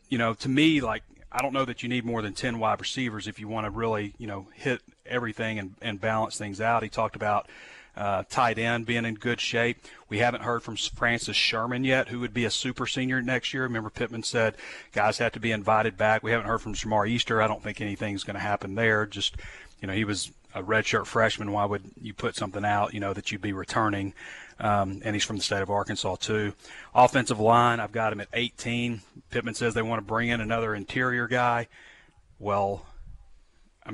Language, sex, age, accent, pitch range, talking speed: English, male, 30-49, American, 105-115 Hz, 225 wpm